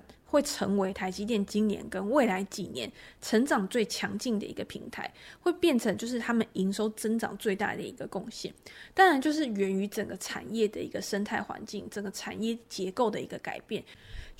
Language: Chinese